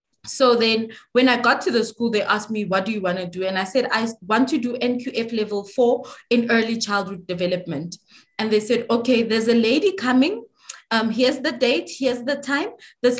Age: 20-39